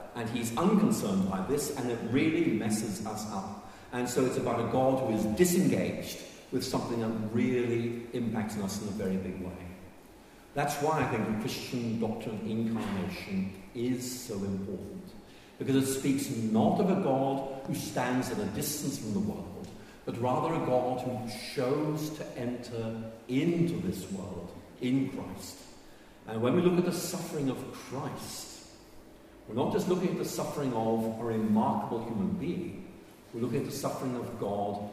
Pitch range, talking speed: 110-150 Hz, 170 wpm